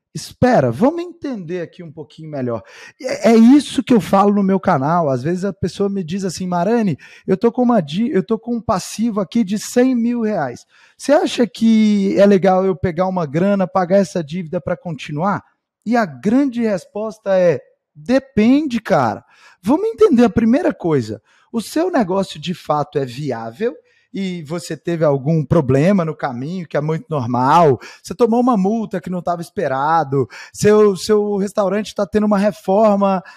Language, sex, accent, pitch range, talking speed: Portuguese, male, Brazilian, 180-235 Hz, 165 wpm